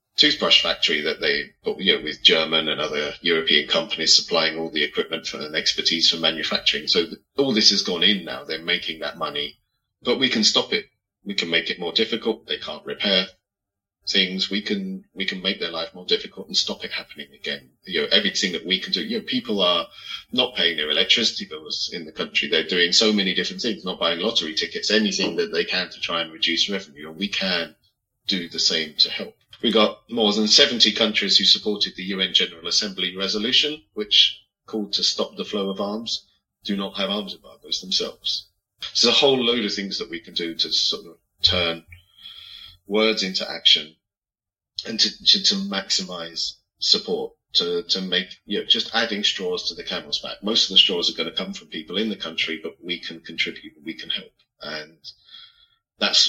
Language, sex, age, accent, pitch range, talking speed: English, male, 30-49, British, 90-115 Hz, 205 wpm